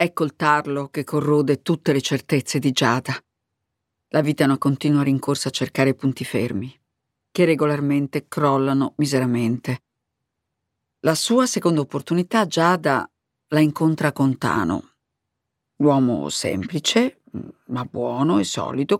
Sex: female